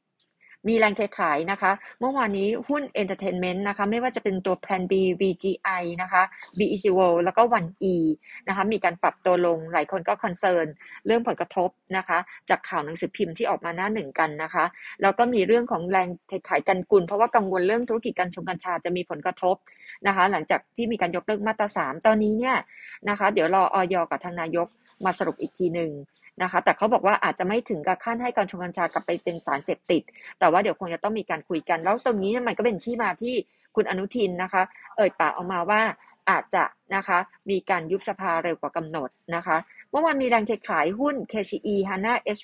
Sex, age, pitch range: female, 20-39, 180-220 Hz